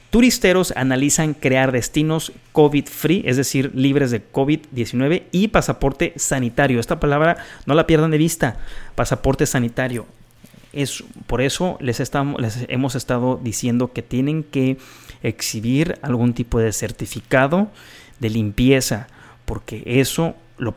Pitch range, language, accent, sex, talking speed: 115-145 Hz, Spanish, Mexican, male, 120 wpm